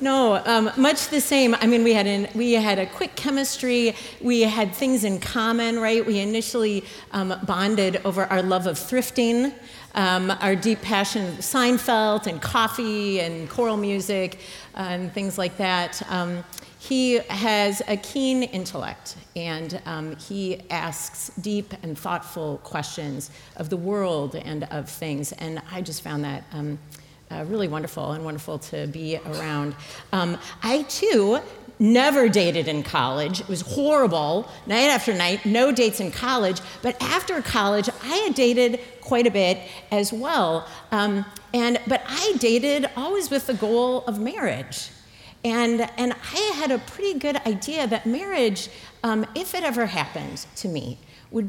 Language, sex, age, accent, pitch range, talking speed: English, female, 40-59, American, 180-245 Hz, 160 wpm